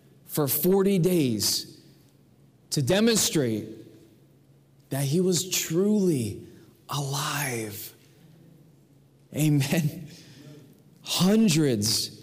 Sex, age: male, 20-39